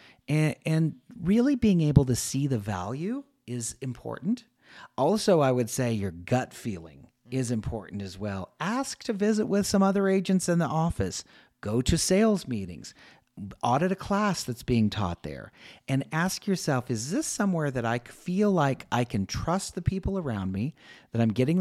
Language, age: English, 40-59